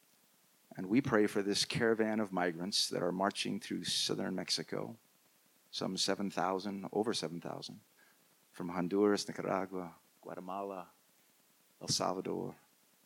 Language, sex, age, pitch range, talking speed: English, male, 40-59, 95-115 Hz, 110 wpm